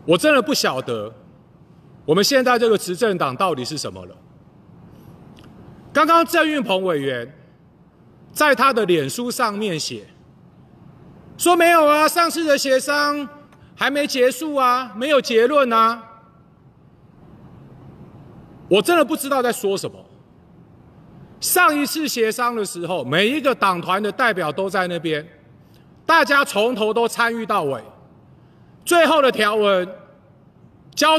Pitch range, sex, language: 180-280 Hz, male, Chinese